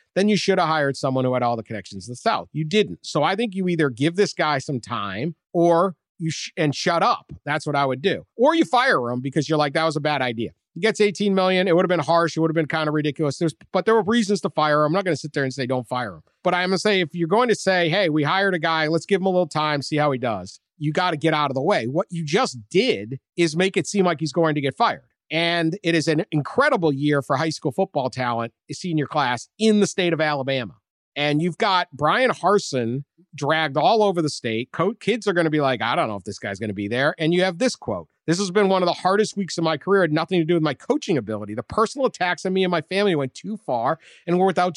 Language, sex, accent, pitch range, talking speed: English, male, American, 145-190 Hz, 290 wpm